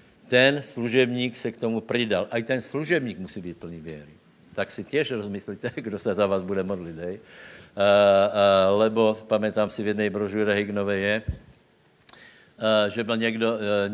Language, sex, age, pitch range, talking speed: Slovak, male, 60-79, 105-140 Hz, 170 wpm